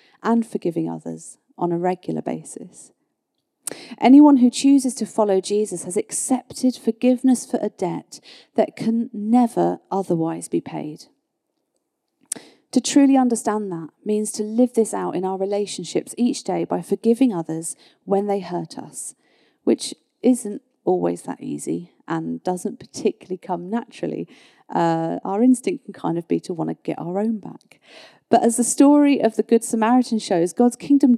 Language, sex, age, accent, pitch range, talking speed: English, female, 40-59, British, 175-245 Hz, 155 wpm